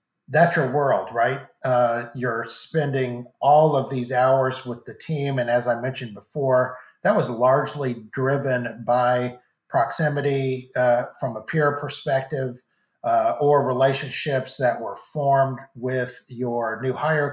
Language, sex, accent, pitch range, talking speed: English, male, American, 125-145 Hz, 140 wpm